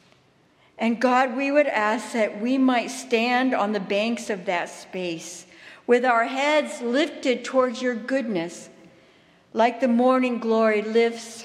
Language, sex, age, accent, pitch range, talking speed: English, female, 60-79, American, 210-260 Hz, 140 wpm